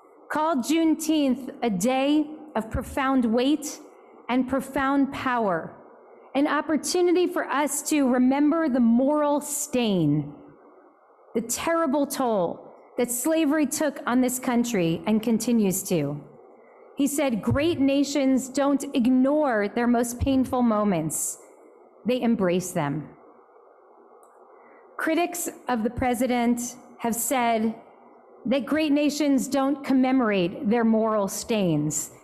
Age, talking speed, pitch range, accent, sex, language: 30-49, 110 wpm, 245-310 Hz, American, female, English